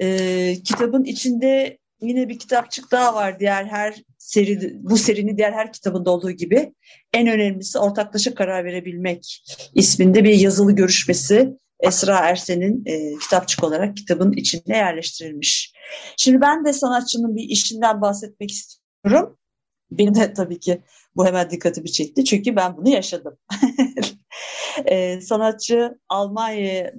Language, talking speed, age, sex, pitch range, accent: Turkish, 130 wpm, 50-69, female, 185-255 Hz, native